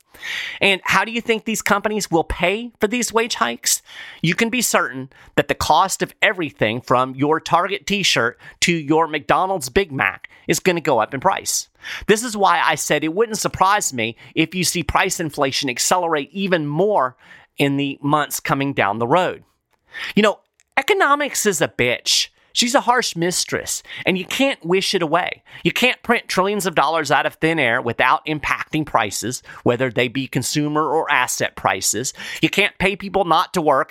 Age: 30-49